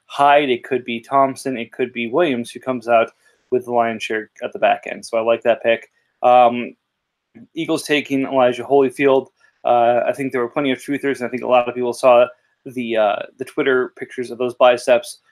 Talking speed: 210 wpm